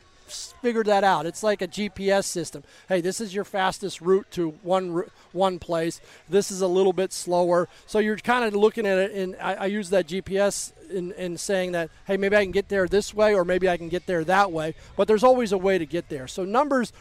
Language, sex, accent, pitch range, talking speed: English, male, American, 180-215 Hz, 235 wpm